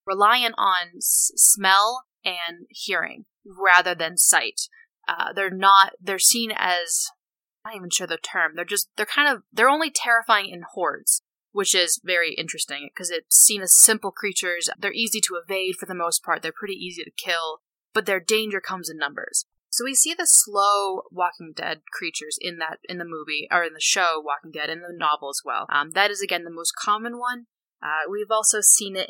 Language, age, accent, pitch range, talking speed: English, 20-39, American, 170-215 Hz, 200 wpm